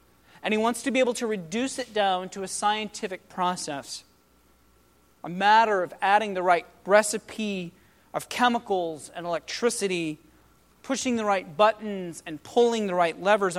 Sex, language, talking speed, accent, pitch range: male, English, 150 wpm, American, 155-215 Hz